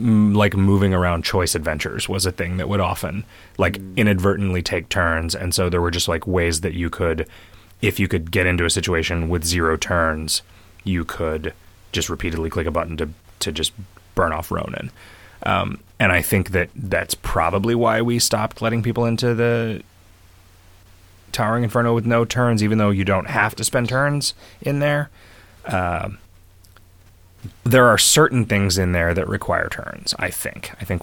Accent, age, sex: American, 30-49, male